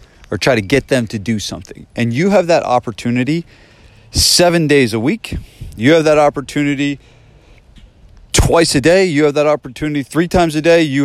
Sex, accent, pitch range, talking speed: male, American, 105-145 Hz, 180 wpm